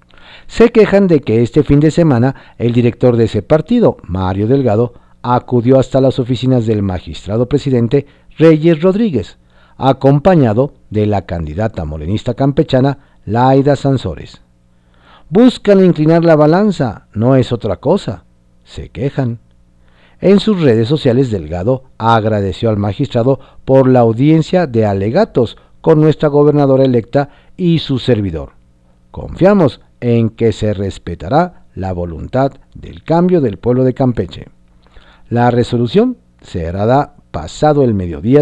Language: Spanish